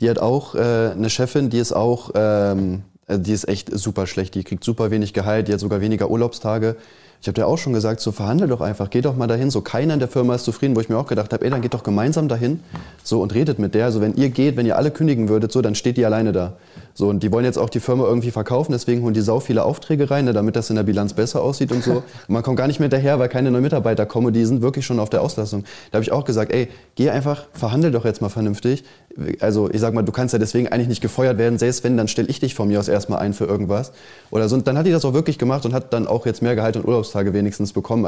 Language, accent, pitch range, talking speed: German, German, 105-125 Hz, 290 wpm